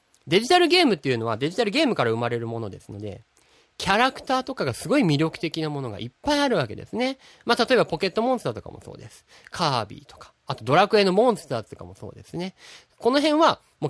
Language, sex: Japanese, male